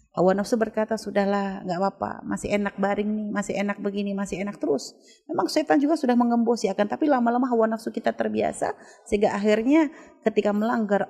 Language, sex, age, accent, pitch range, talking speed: Indonesian, female, 30-49, native, 160-205 Hz, 175 wpm